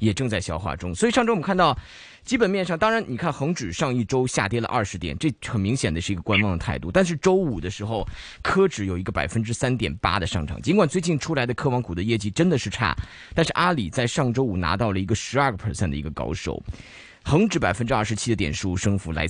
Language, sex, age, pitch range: Chinese, male, 20-39, 95-135 Hz